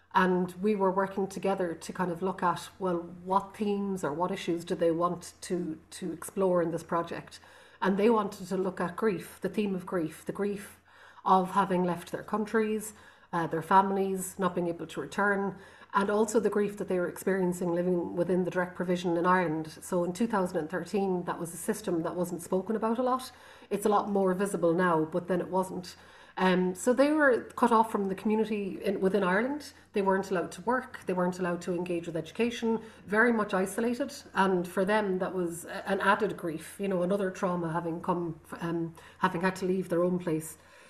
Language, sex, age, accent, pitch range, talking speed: English, female, 30-49, Irish, 180-210 Hz, 200 wpm